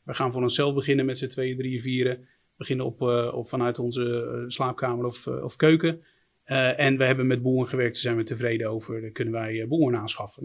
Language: Dutch